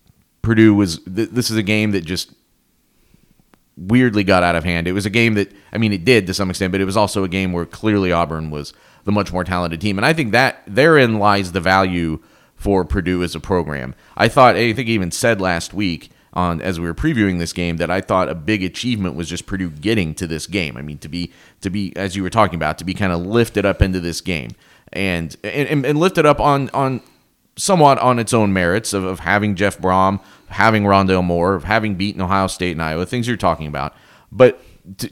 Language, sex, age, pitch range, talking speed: English, male, 30-49, 90-110 Hz, 230 wpm